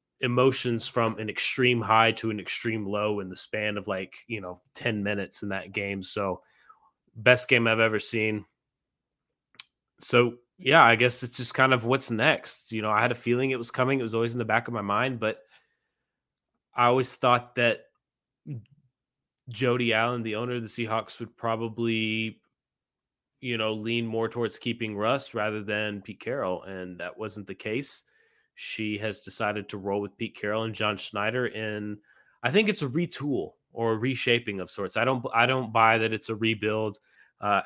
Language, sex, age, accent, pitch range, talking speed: English, male, 20-39, American, 105-120 Hz, 185 wpm